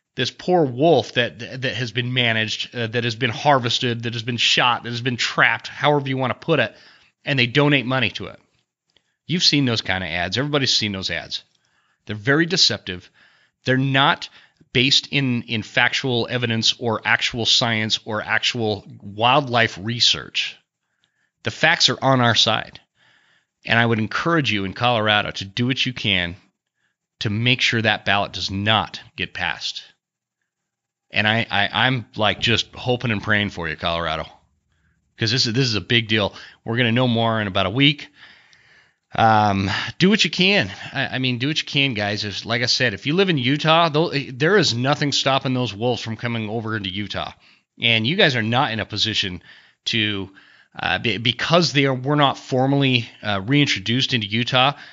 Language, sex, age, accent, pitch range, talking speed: English, male, 30-49, American, 105-130 Hz, 185 wpm